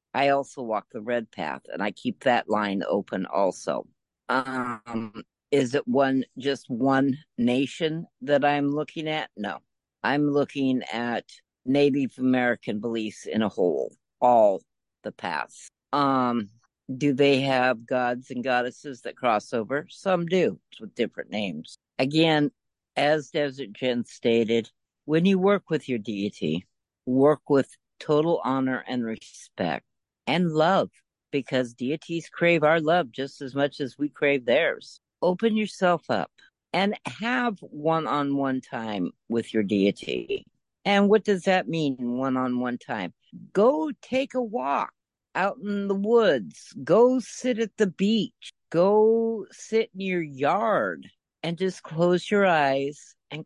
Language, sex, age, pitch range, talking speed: English, female, 60-79, 130-185 Hz, 140 wpm